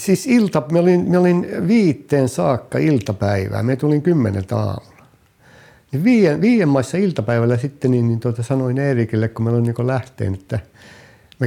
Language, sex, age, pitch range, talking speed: Finnish, male, 60-79, 110-155 Hz, 130 wpm